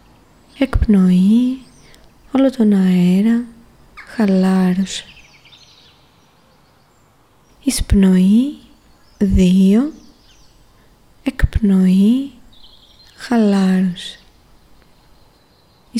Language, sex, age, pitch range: Greek, female, 20-39, 190-230 Hz